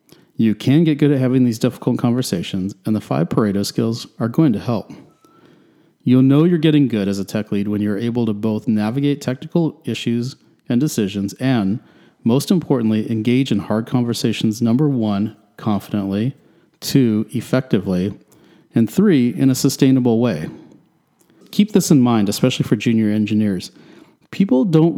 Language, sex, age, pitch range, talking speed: English, male, 40-59, 105-135 Hz, 155 wpm